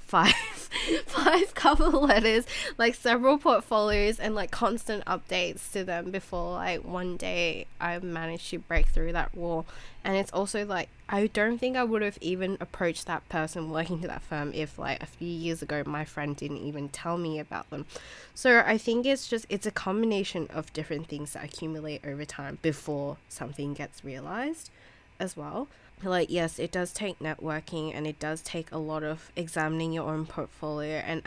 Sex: female